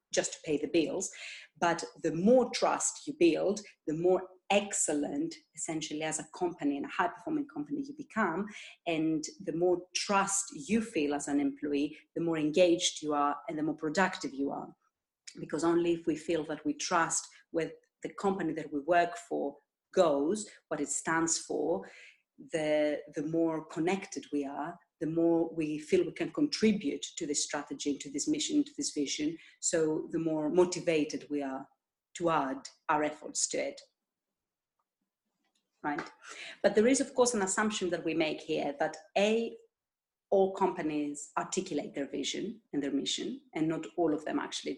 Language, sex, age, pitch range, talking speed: English, female, 40-59, 155-210 Hz, 170 wpm